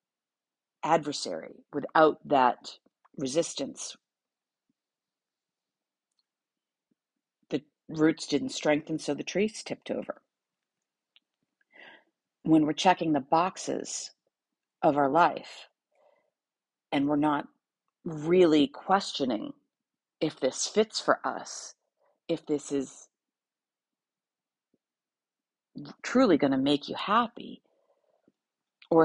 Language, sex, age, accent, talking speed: English, female, 50-69, American, 85 wpm